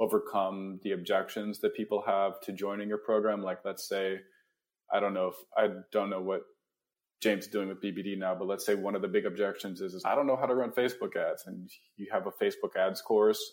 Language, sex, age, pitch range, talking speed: English, male, 20-39, 95-120 Hz, 230 wpm